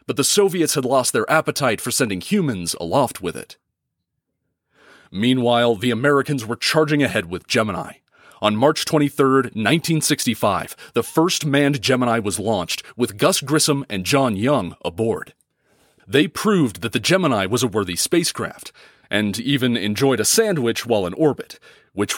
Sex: male